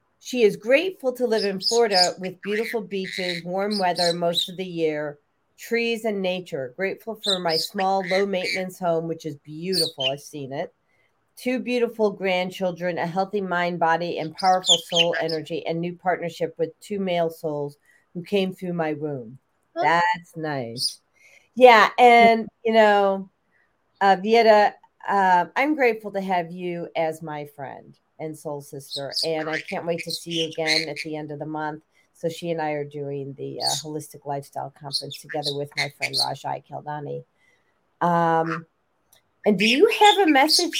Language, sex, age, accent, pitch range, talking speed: English, female, 40-59, American, 155-205 Hz, 165 wpm